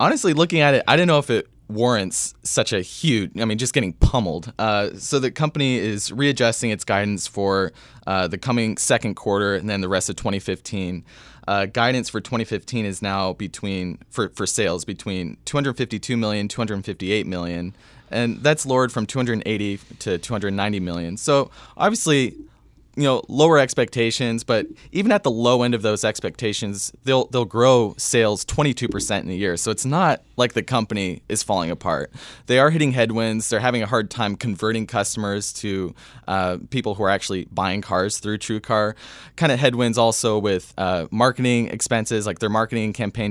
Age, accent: 20-39, American